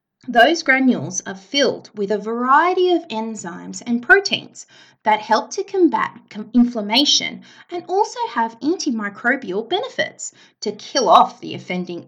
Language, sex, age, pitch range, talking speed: English, female, 20-39, 210-300 Hz, 130 wpm